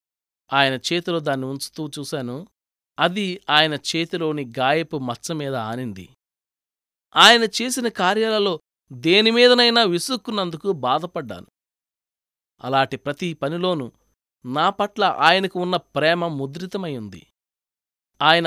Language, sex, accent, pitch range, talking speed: Telugu, male, native, 120-195 Hz, 90 wpm